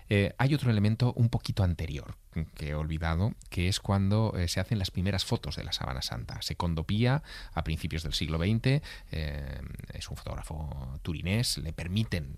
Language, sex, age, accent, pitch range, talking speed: Spanish, male, 30-49, Spanish, 80-105 Hz, 180 wpm